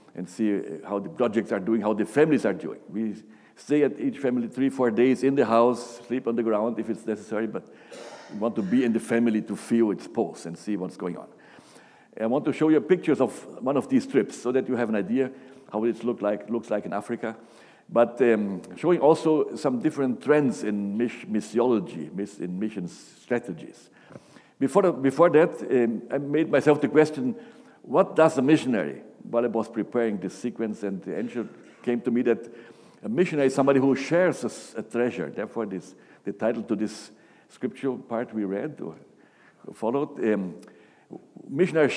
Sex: male